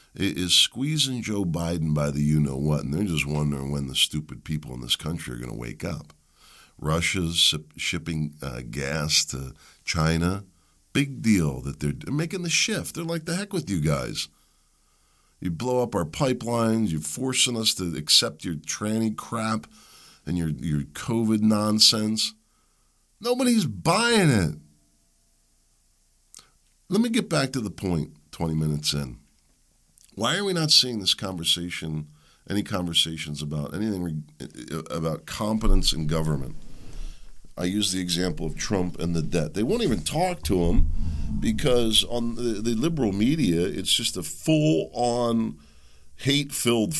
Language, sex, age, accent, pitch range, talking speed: English, male, 50-69, American, 75-115 Hz, 145 wpm